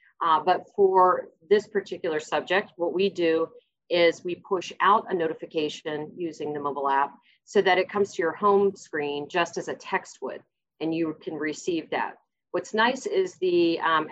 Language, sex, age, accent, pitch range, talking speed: English, female, 40-59, American, 155-200 Hz, 180 wpm